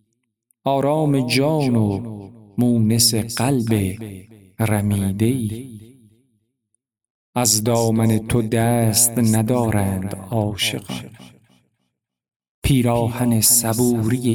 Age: 50-69